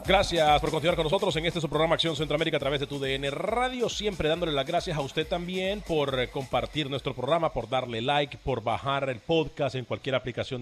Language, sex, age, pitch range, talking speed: Spanish, male, 40-59, 125-160 Hz, 210 wpm